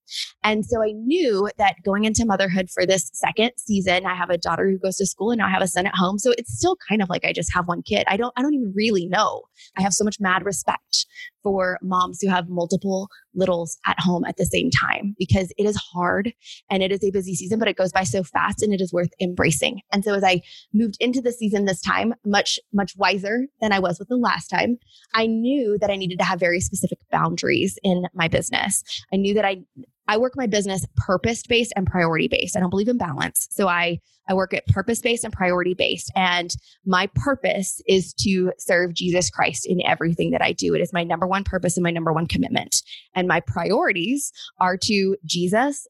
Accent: American